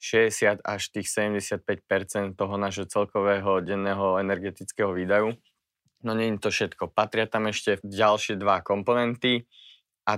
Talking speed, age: 130 wpm, 20-39